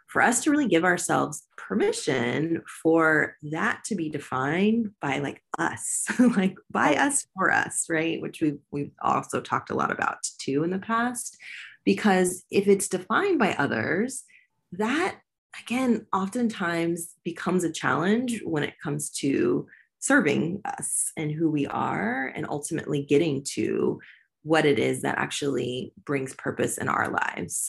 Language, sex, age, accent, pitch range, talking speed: English, female, 30-49, American, 145-205 Hz, 150 wpm